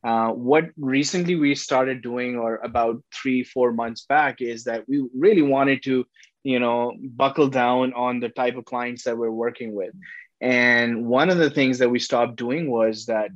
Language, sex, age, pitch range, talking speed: English, male, 20-39, 120-130 Hz, 190 wpm